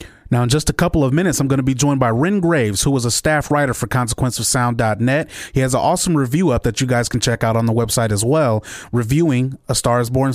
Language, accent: English, American